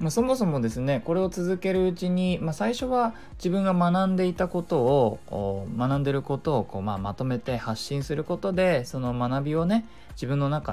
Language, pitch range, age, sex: Japanese, 115-175 Hz, 20-39, male